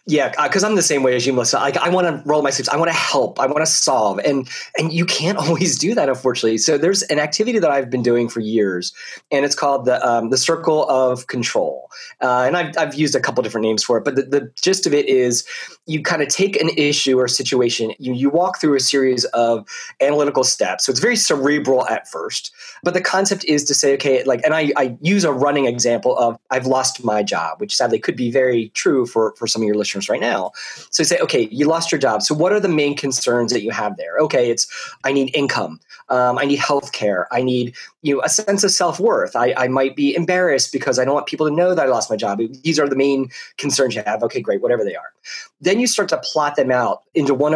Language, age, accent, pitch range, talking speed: English, 30-49, American, 125-170 Hz, 250 wpm